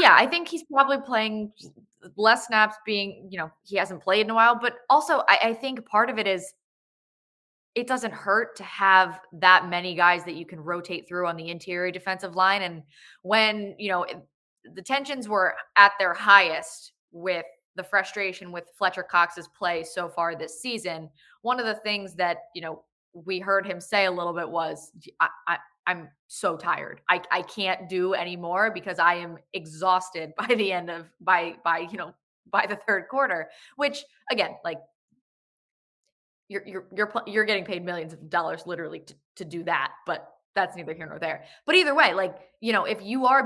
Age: 20-39